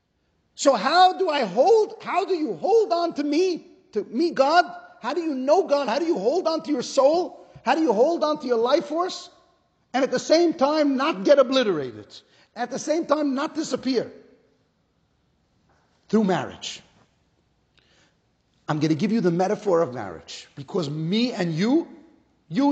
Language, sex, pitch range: English, male, 255-320 Hz